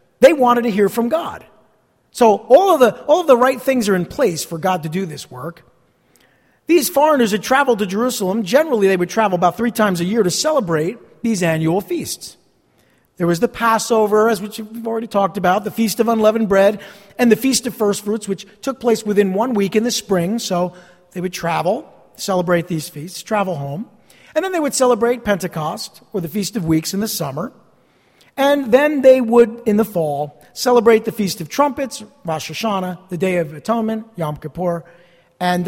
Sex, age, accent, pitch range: male, 50-69, American, 175-235 Hz